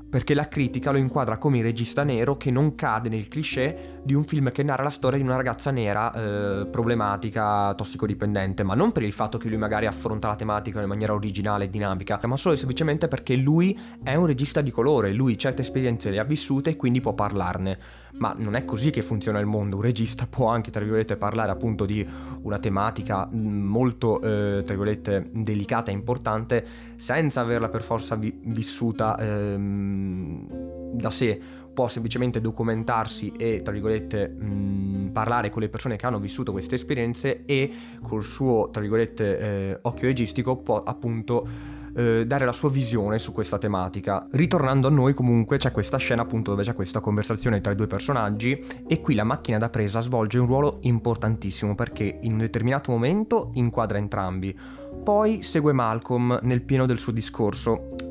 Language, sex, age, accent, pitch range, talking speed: Italian, male, 20-39, native, 105-130 Hz, 180 wpm